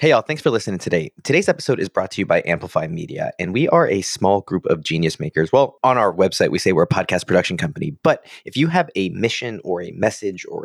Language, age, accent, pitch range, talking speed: English, 30-49, American, 105-170 Hz, 255 wpm